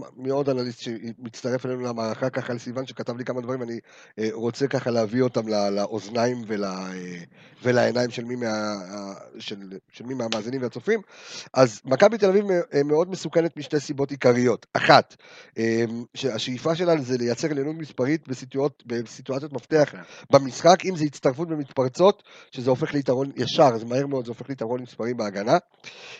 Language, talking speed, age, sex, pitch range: Hebrew, 140 wpm, 40-59, male, 120-150 Hz